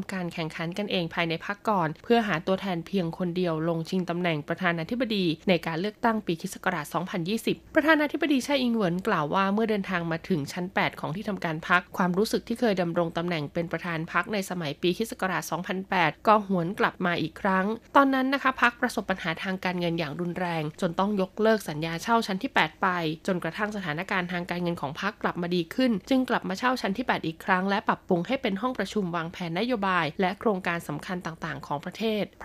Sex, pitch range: female, 175-220 Hz